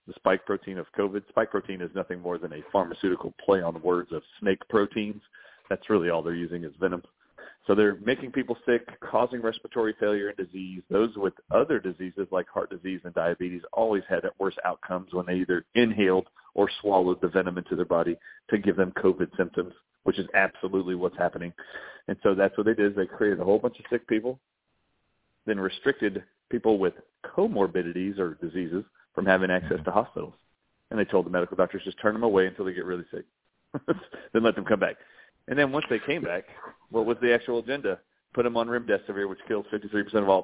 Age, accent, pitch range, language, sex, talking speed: 40-59, American, 90-110 Hz, English, male, 205 wpm